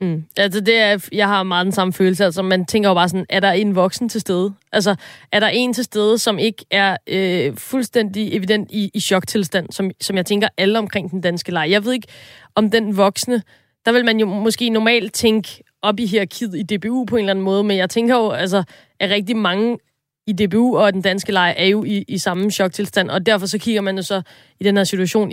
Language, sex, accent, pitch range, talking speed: Danish, female, native, 180-210 Hz, 235 wpm